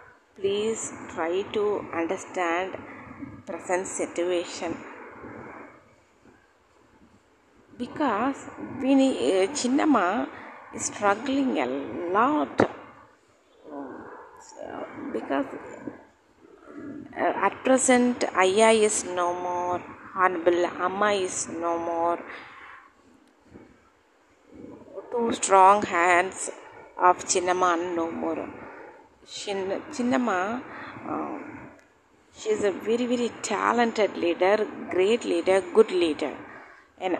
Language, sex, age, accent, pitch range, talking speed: Tamil, female, 20-39, native, 180-295 Hz, 80 wpm